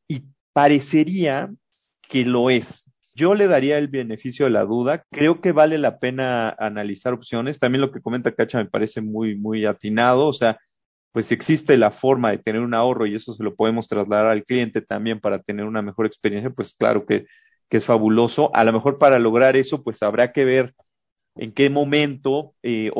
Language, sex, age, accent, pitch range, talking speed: Spanish, male, 40-59, Mexican, 115-150 Hz, 195 wpm